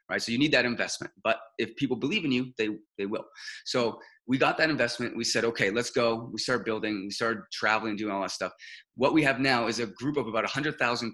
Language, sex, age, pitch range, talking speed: English, male, 30-49, 110-140 Hz, 255 wpm